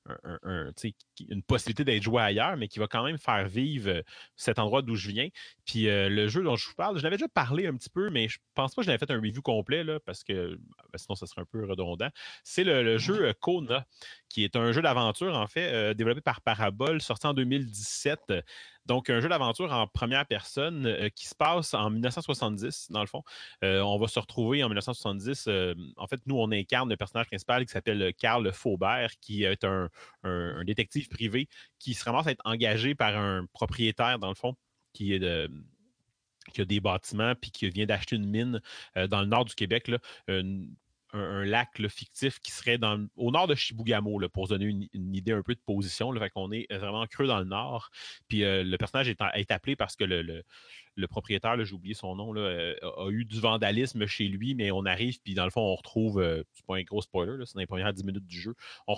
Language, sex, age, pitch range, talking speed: French, male, 30-49, 100-120 Hz, 230 wpm